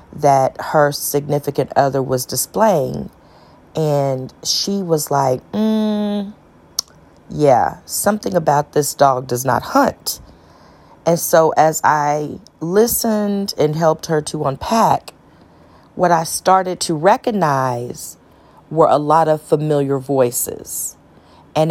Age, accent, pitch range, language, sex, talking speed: 40-59, American, 130-160 Hz, English, female, 115 wpm